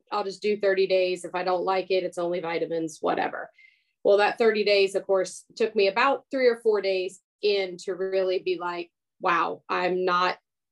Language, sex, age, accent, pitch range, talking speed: English, female, 30-49, American, 185-220 Hz, 195 wpm